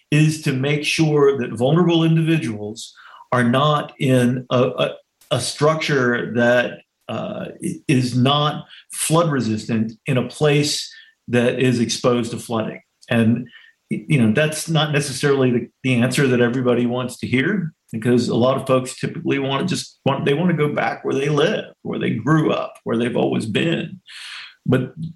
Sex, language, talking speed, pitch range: male, English, 160 wpm, 120-155 Hz